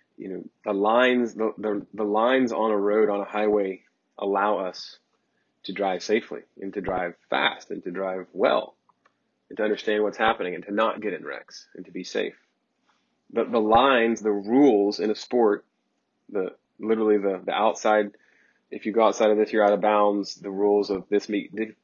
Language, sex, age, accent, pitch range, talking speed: English, male, 30-49, American, 100-115 Hz, 190 wpm